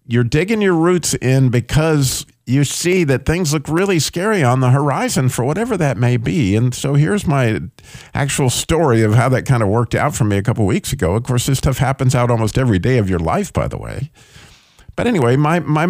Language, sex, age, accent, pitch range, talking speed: English, male, 50-69, American, 110-140 Hz, 225 wpm